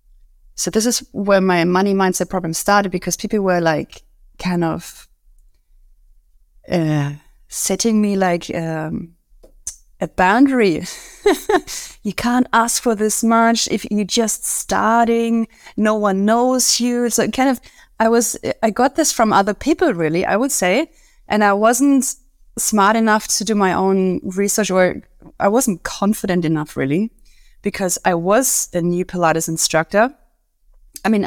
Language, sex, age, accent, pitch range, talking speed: English, female, 30-49, German, 180-230 Hz, 150 wpm